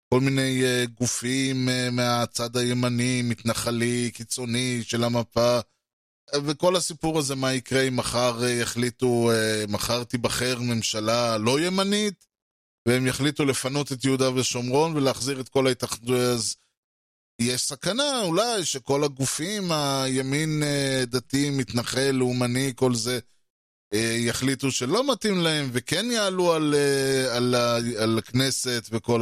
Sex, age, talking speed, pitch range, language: male, 20-39, 110 wpm, 120-140 Hz, Hebrew